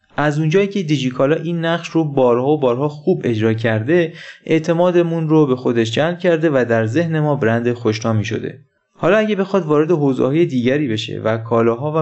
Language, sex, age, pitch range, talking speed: Persian, male, 20-39, 115-155 Hz, 185 wpm